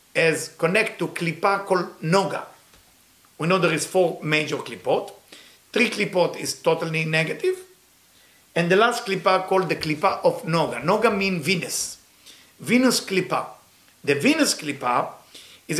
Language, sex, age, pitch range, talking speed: English, male, 50-69, 155-210 Hz, 135 wpm